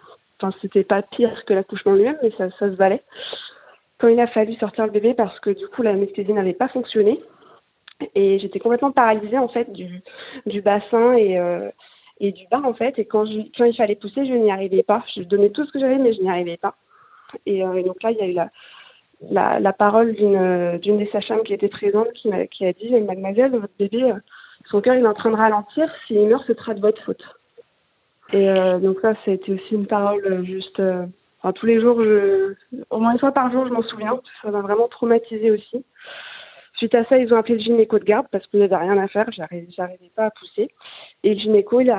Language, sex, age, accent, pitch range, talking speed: French, female, 20-39, French, 200-240 Hz, 240 wpm